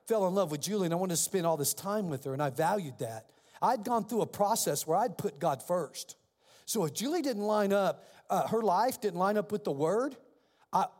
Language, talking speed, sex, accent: English, 245 wpm, male, American